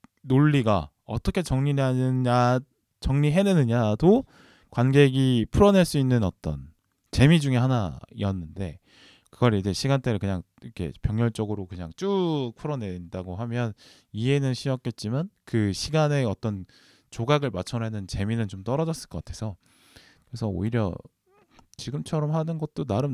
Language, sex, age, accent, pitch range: Korean, male, 20-39, native, 100-145 Hz